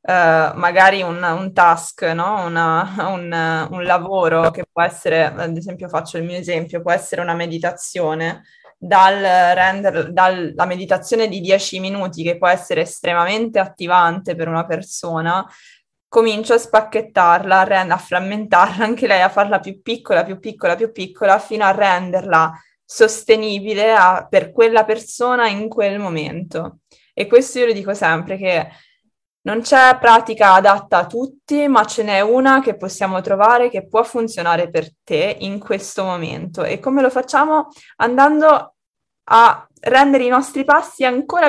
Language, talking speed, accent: Italian, 140 wpm, native